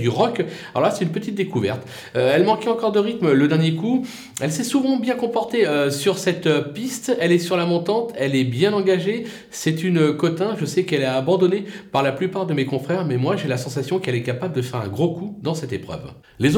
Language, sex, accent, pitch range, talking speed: French, male, French, 130-180 Hz, 245 wpm